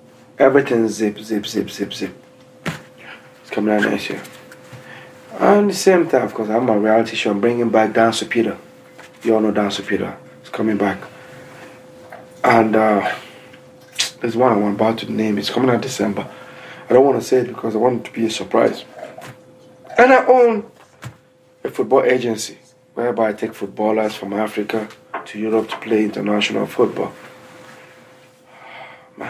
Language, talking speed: English, 170 wpm